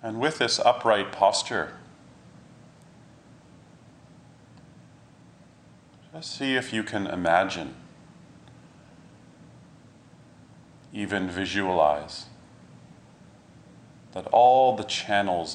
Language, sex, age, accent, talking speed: English, male, 40-59, American, 65 wpm